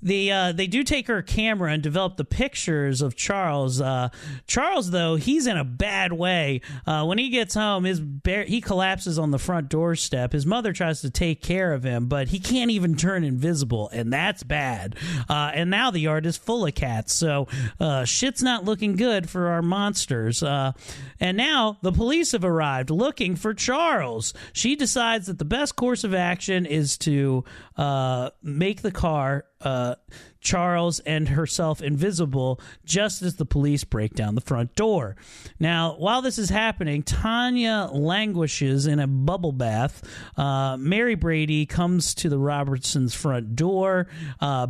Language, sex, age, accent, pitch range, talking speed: English, male, 40-59, American, 140-195 Hz, 170 wpm